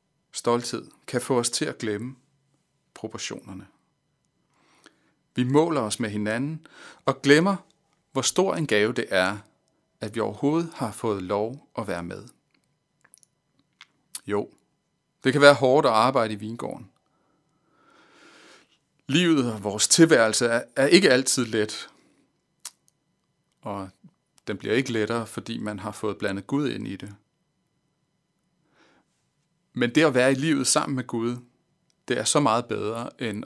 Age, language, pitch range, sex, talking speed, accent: 40-59, Danish, 110-160 Hz, male, 135 wpm, native